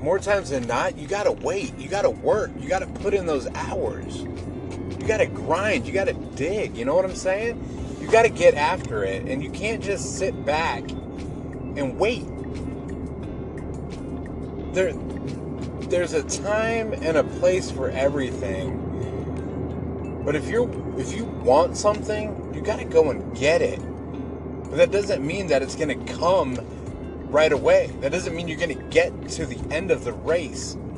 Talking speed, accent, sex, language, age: 165 wpm, American, male, English, 30-49